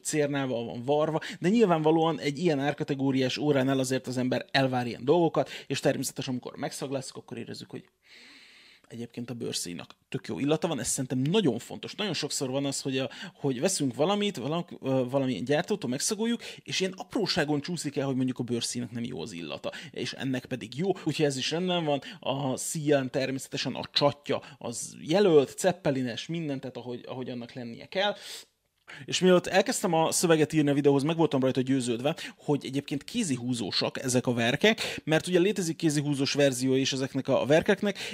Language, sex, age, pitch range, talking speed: Hungarian, male, 30-49, 130-160 Hz, 170 wpm